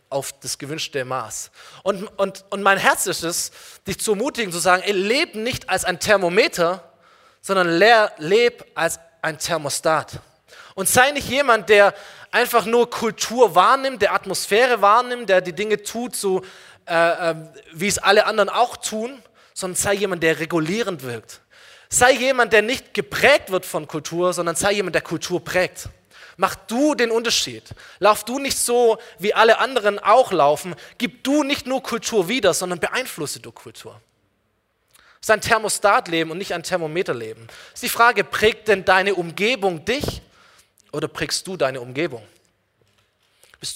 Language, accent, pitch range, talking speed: German, German, 160-220 Hz, 160 wpm